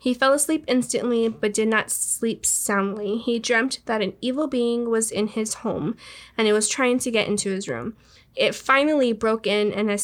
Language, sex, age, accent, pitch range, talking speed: English, female, 10-29, American, 210-245 Hz, 205 wpm